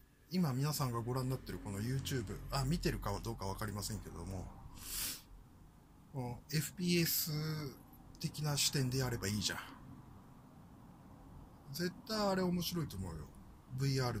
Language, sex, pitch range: Japanese, male, 95-150 Hz